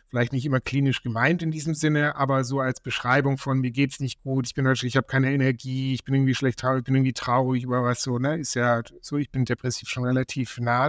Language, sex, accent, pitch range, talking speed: German, male, German, 125-140 Hz, 250 wpm